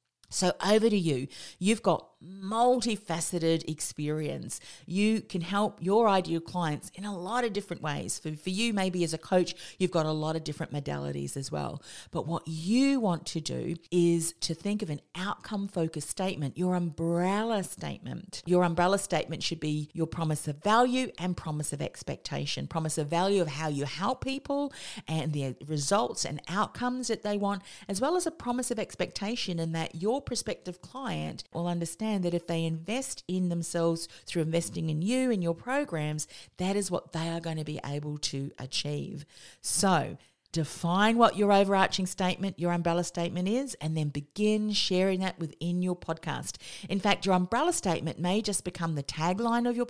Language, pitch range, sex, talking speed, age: English, 160-200 Hz, female, 180 wpm, 40-59